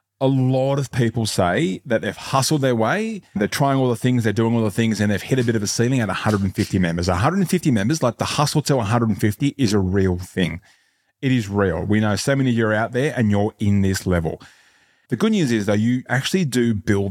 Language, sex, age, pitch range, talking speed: English, male, 30-49, 95-120 Hz, 240 wpm